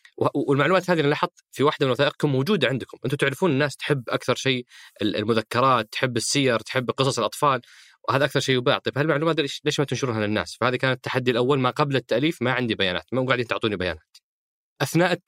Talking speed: 185 wpm